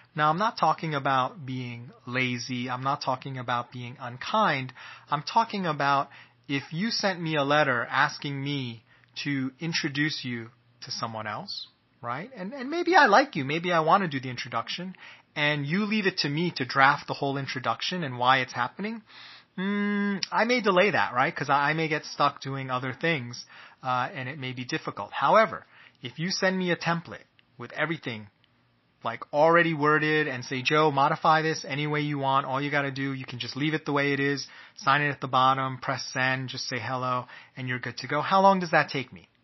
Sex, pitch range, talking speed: male, 130-160 Hz, 205 wpm